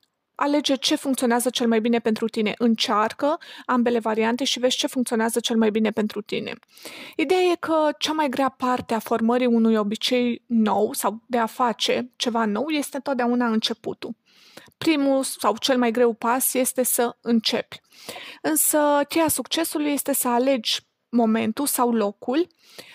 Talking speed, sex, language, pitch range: 155 wpm, female, Romanian, 235-290 Hz